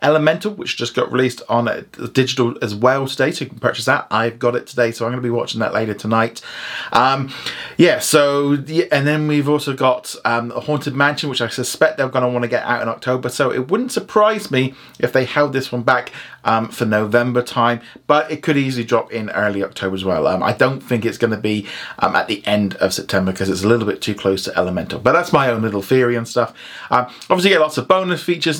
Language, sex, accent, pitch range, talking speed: English, male, British, 120-155 Hz, 245 wpm